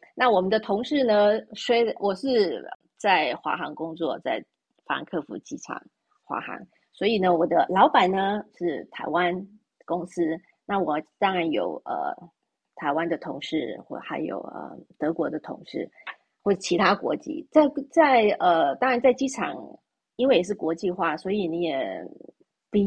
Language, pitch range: Chinese, 180-255 Hz